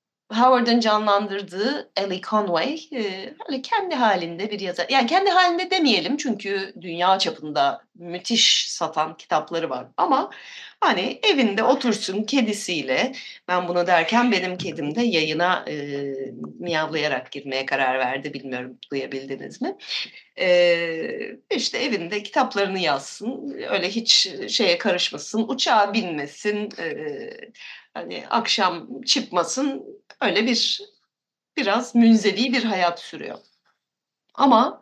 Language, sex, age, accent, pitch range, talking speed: Turkish, female, 40-59, native, 165-260 Hz, 110 wpm